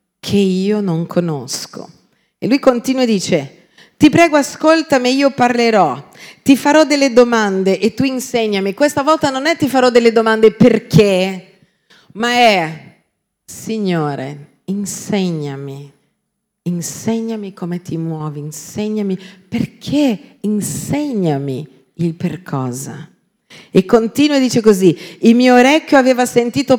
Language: Italian